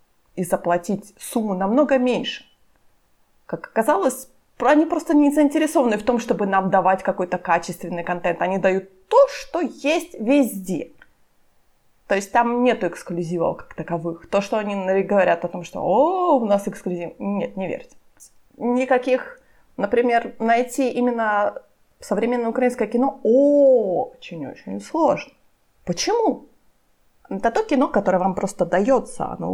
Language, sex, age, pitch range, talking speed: Ukrainian, female, 20-39, 190-275 Hz, 130 wpm